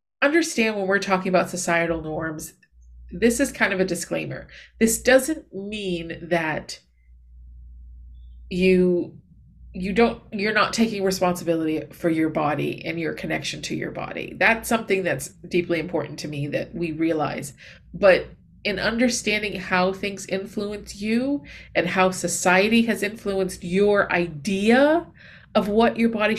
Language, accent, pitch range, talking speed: English, American, 175-215 Hz, 140 wpm